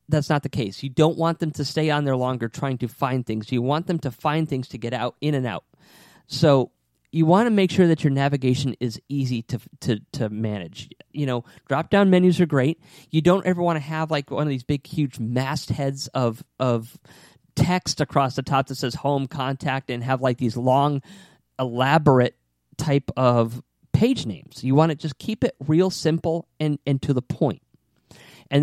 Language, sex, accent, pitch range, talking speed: English, male, American, 125-160 Hz, 205 wpm